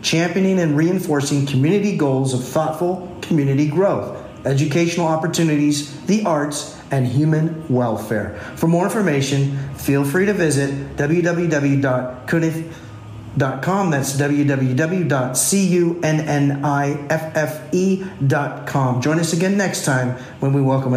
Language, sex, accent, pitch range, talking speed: English, male, American, 130-170 Hz, 95 wpm